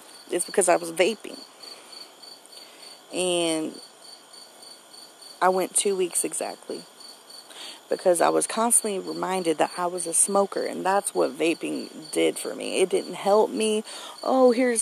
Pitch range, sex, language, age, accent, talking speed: 175-230 Hz, female, English, 40-59, American, 140 wpm